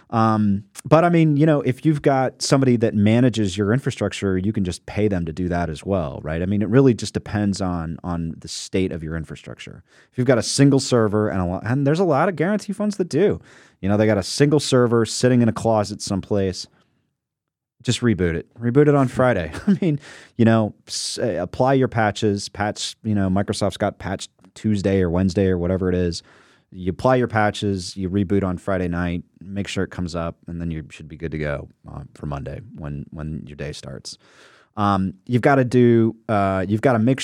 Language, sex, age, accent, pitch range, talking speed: English, male, 30-49, American, 90-115 Hz, 220 wpm